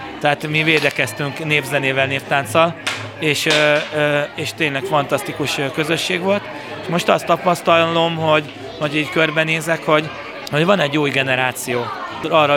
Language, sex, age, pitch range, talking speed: Hungarian, male, 30-49, 140-160 Hz, 120 wpm